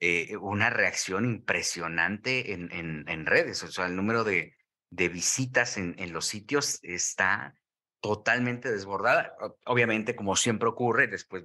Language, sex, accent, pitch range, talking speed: Spanish, male, Mexican, 90-115 Hz, 135 wpm